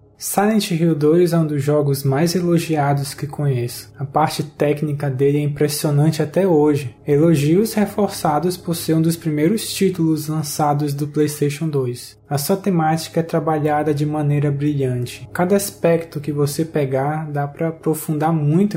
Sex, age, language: male, 20-39, Portuguese